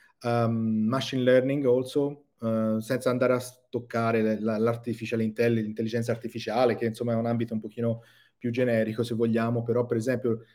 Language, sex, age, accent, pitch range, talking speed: Italian, male, 30-49, native, 110-125 Hz, 150 wpm